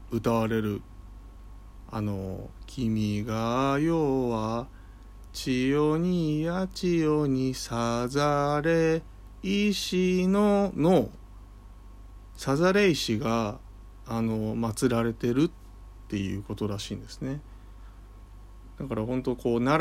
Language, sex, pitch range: Japanese, male, 90-130 Hz